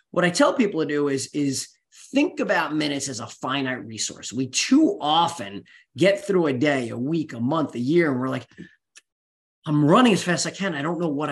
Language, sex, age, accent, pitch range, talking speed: English, male, 30-49, American, 130-195 Hz, 225 wpm